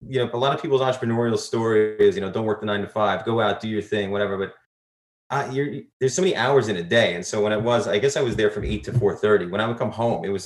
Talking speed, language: 310 wpm, English